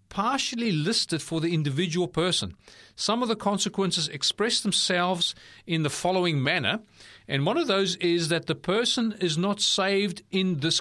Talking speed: 160 wpm